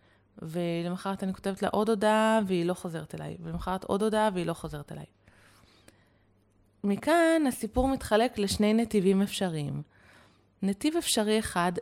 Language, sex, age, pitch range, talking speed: Hebrew, female, 20-39, 160-210 Hz, 130 wpm